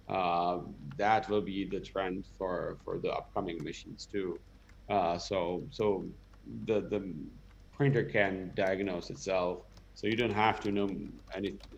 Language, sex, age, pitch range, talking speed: English, male, 30-49, 90-105 Hz, 145 wpm